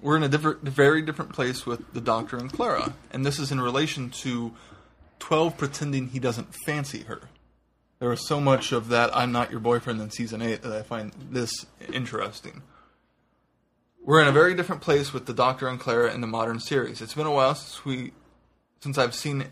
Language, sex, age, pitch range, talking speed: English, male, 20-39, 115-140 Hz, 190 wpm